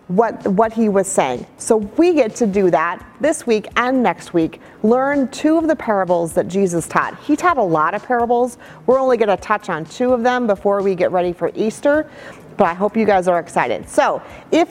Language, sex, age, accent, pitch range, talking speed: English, female, 30-49, American, 185-260 Hz, 220 wpm